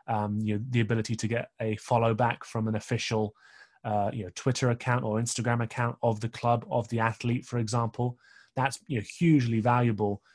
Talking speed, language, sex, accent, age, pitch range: 160 wpm, English, male, British, 20-39, 110-120 Hz